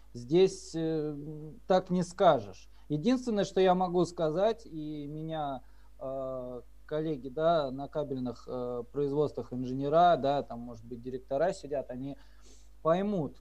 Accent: native